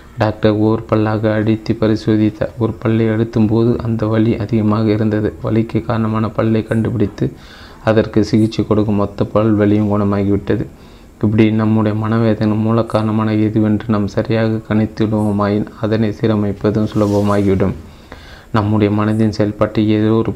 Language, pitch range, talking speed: Tamil, 105-110 Hz, 120 wpm